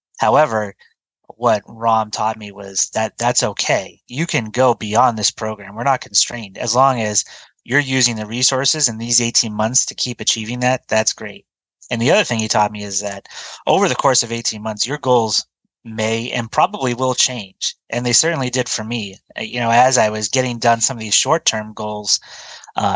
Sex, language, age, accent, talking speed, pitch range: male, English, 30-49, American, 200 wpm, 105-125 Hz